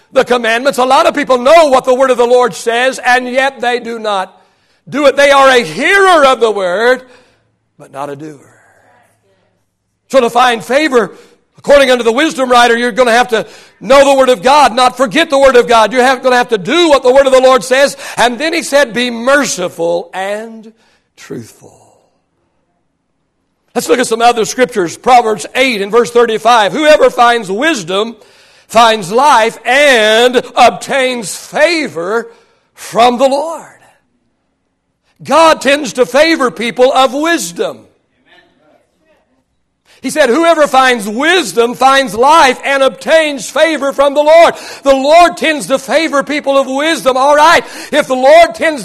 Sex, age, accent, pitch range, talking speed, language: male, 60-79, American, 230-285 Hz, 165 wpm, English